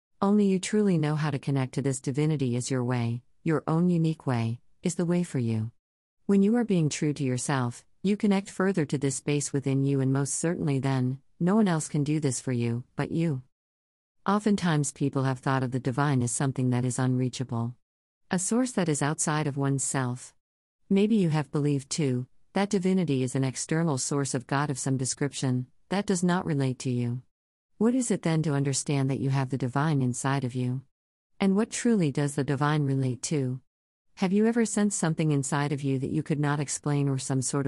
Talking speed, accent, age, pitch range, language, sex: 205 wpm, American, 50-69, 130-160 Hz, English, female